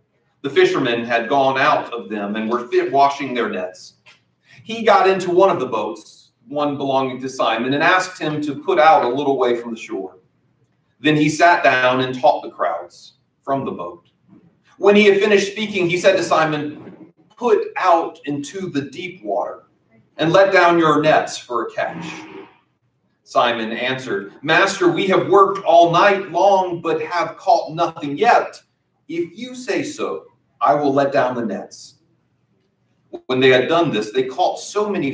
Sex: male